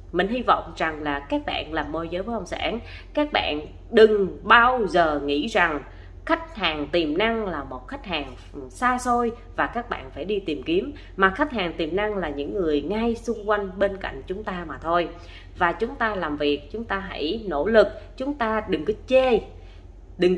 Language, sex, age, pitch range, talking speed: Vietnamese, female, 20-39, 150-230 Hz, 205 wpm